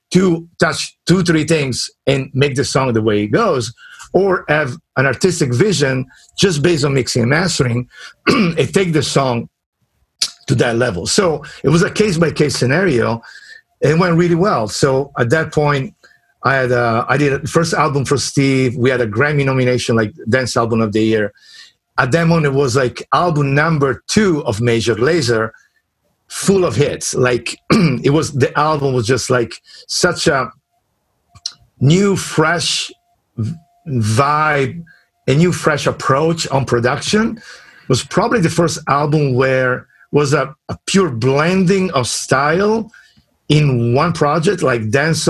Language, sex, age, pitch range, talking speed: English, male, 50-69, 125-165 Hz, 160 wpm